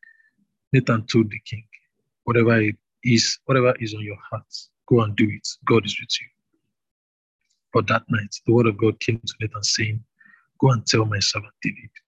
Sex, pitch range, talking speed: male, 110-125 Hz, 185 wpm